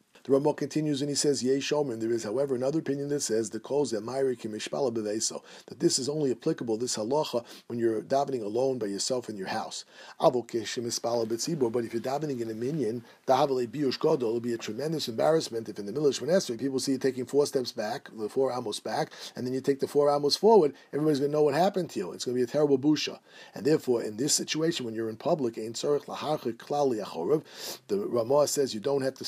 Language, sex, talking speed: English, male, 205 wpm